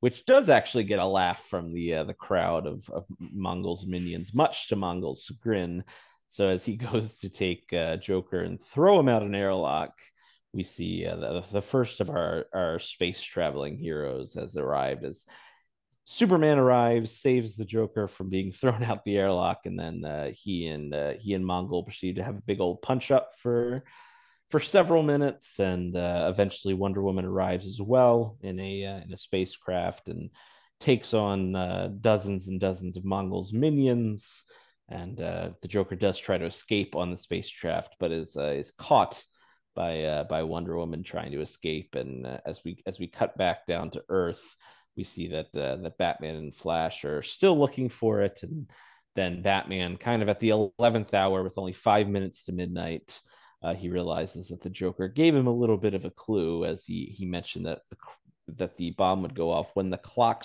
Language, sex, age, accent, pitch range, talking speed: English, male, 30-49, American, 90-115 Hz, 195 wpm